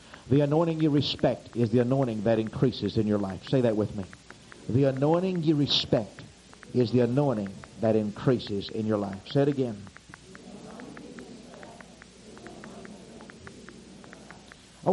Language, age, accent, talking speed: English, 50-69, American, 130 wpm